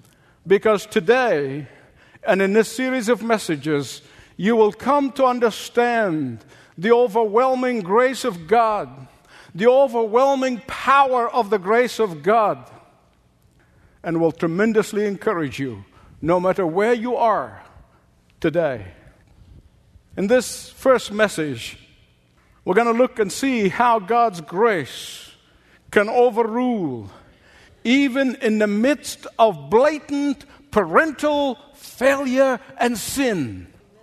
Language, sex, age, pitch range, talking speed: English, male, 50-69, 175-255 Hz, 110 wpm